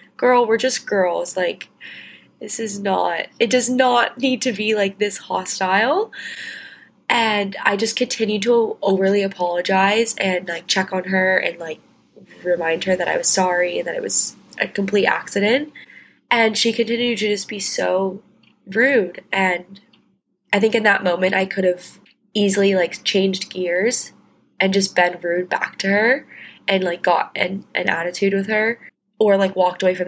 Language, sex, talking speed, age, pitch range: English, female, 170 wpm, 20-39, 180-215 Hz